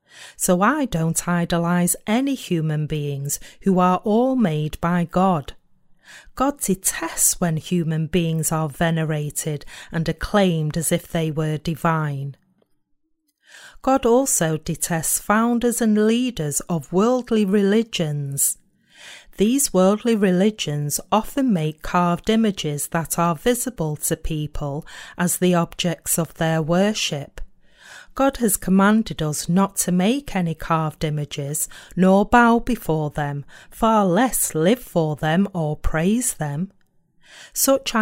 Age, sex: 40-59, female